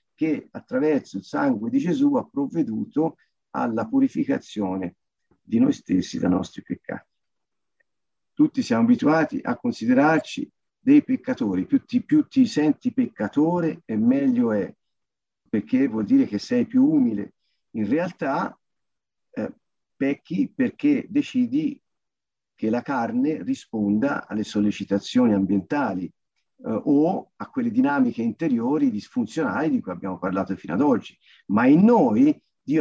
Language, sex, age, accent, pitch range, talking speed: Italian, male, 50-69, native, 225-275 Hz, 125 wpm